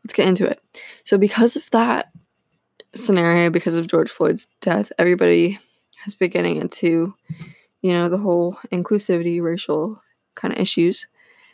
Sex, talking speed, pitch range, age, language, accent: female, 145 wpm, 170-220 Hz, 20-39, English, American